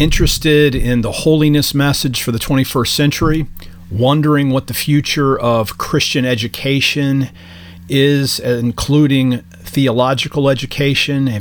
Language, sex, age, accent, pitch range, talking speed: English, male, 40-59, American, 110-135 Hz, 105 wpm